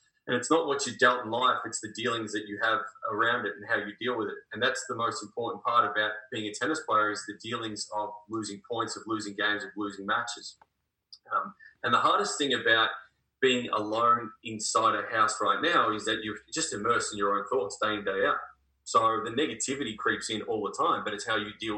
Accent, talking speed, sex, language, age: Australian, 230 wpm, male, English, 20-39